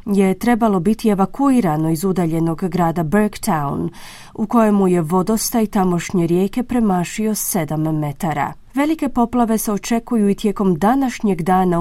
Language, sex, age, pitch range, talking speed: Croatian, female, 30-49, 175-225 Hz, 125 wpm